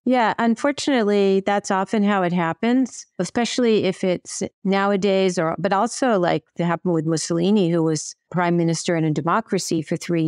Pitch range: 170-205 Hz